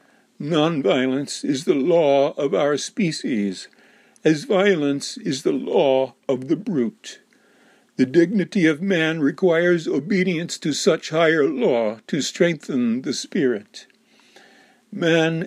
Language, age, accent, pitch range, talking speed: English, 60-79, American, 145-195 Hz, 115 wpm